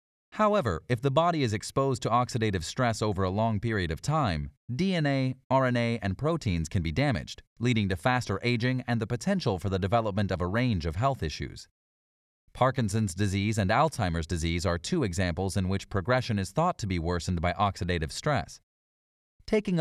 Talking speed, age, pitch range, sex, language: 175 wpm, 30-49, 95-130 Hz, male, English